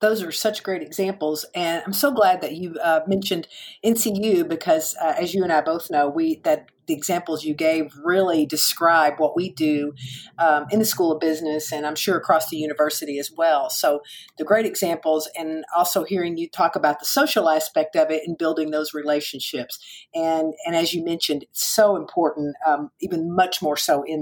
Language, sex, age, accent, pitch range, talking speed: English, female, 50-69, American, 155-220 Hz, 200 wpm